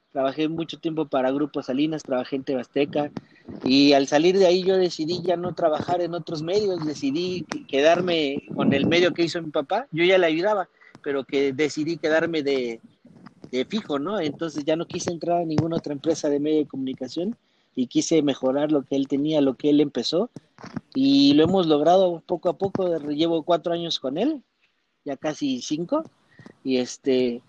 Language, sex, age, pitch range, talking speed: Spanish, male, 40-59, 140-175 Hz, 185 wpm